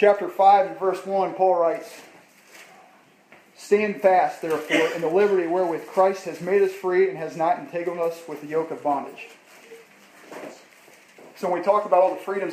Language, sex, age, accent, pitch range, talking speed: English, male, 40-59, American, 155-190 Hz, 175 wpm